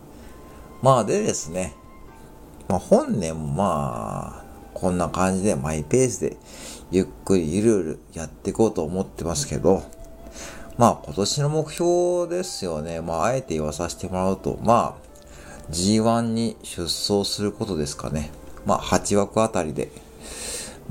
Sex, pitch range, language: male, 75-100 Hz, Japanese